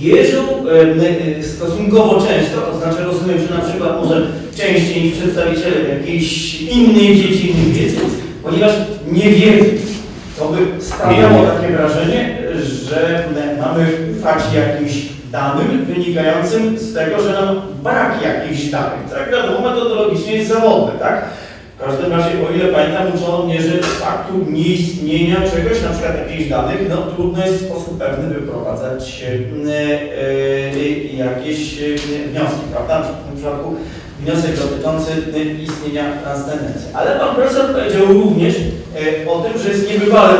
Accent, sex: native, male